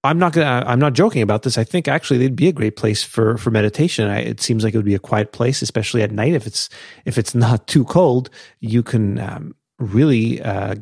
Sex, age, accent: male, 30-49, American